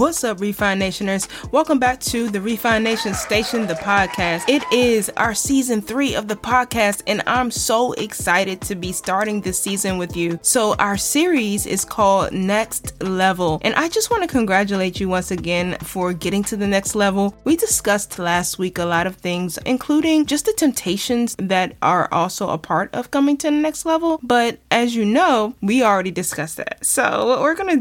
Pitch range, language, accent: 190-245 Hz, English, American